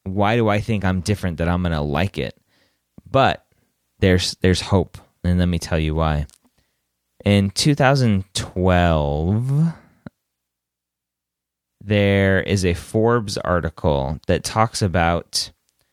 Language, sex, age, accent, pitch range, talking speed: English, male, 30-49, American, 80-105 Hz, 120 wpm